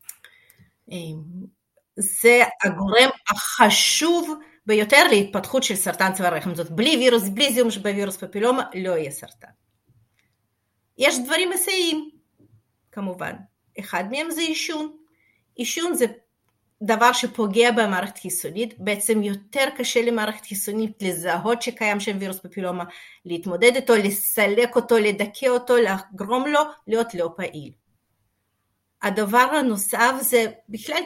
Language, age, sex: Hebrew, 40-59, female